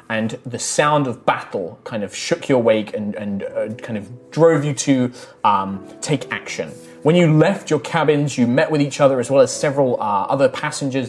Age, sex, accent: 20-39, male, British